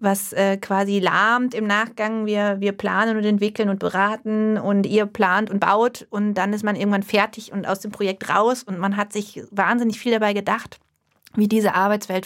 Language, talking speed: German, 195 wpm